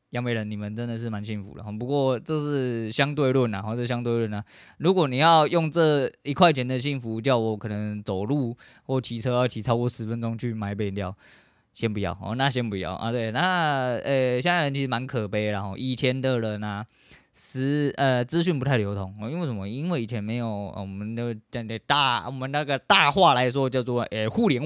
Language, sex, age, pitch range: Chinese, male, 20-39, 105-130 Hz